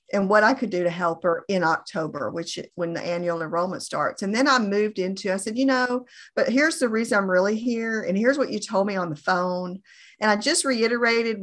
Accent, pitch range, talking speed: American, 190-250 Hz, 235 wpm